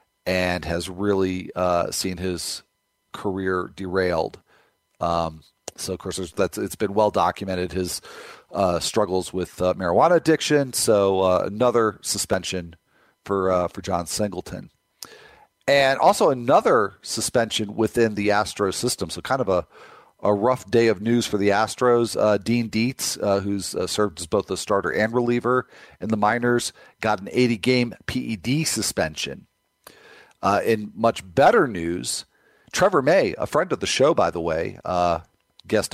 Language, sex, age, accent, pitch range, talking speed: English, male, 40-59, American, 95-125 Hz, 150 wpm